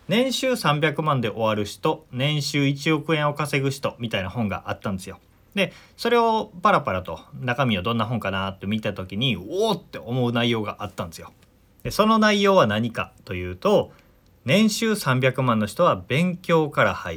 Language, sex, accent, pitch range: Japanese, male, native, 105-165 Hz